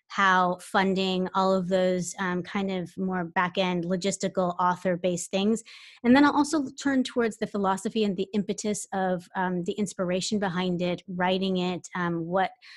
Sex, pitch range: female, 185-210 Hz